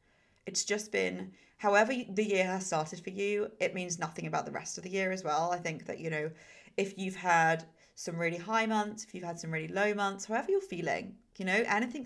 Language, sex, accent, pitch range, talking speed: English, female, British, 165-210 Hz, 230 wpm